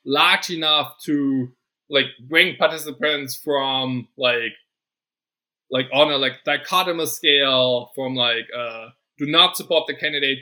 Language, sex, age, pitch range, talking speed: English, male, 20-39, 135-170 Hz, 125 wpm